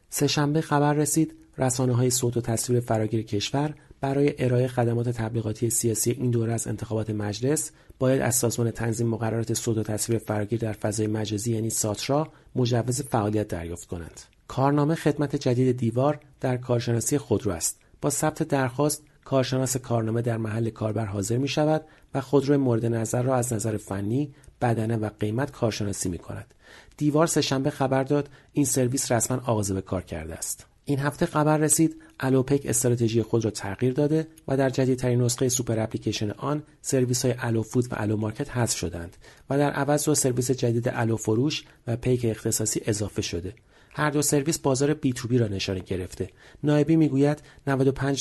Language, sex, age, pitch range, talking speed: Persian, male, 40-59, 110-140 Hz, 165 wpm